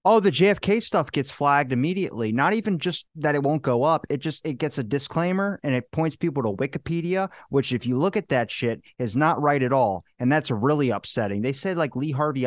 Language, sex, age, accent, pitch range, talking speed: English, male, 30-49, American, 120-160 Hz, 230 wpm